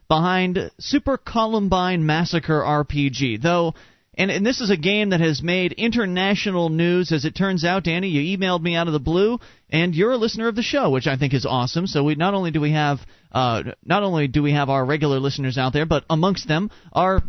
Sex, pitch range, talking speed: male, 145-190 Hz, 220 wpm